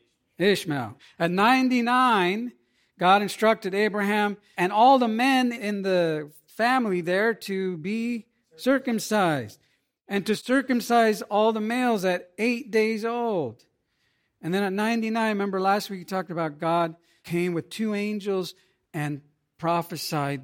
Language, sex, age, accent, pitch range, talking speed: English, male, 50-69, American, 150-210 Hz, 130 wpm